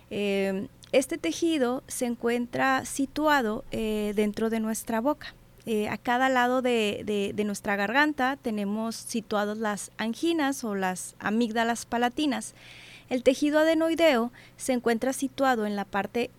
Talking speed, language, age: 130 wpm, Spanish, 30-49